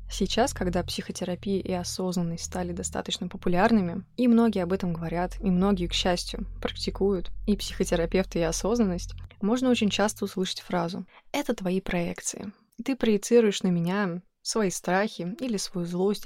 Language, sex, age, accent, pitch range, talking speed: Russian, female, 20-39, native, 180-215 Hz, 145 wpm